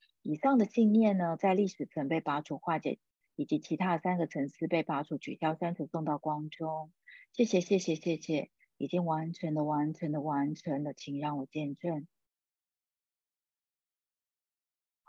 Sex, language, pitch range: female, Chinese, 150-195 Hz